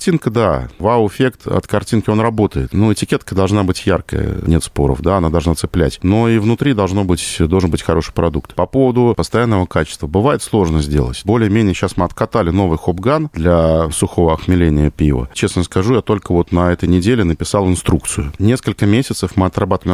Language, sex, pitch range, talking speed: Russian, male, 85-110 Hz, 180 wpm